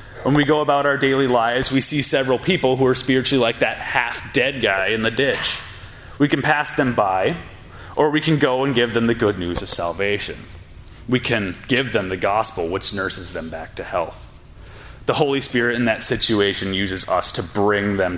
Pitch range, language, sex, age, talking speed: 95-130 Hz, English, male, 30-49, 200 wpm